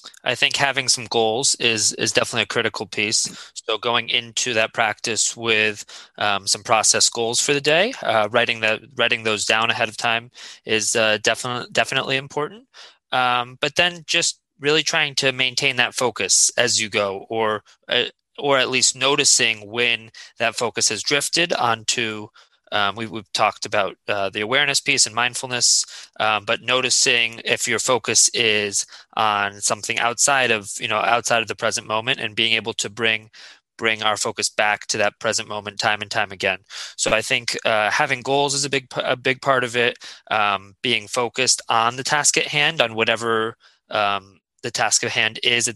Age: 20-39